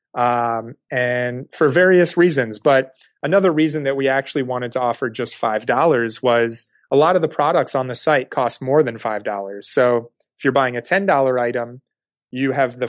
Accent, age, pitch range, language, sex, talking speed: American, 30-49, 120-145 Hz, English, male, 180 wpm